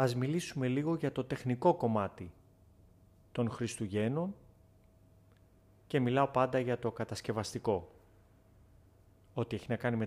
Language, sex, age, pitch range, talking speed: Greek, male, 30-49, 95-125 Hz, 120 wpm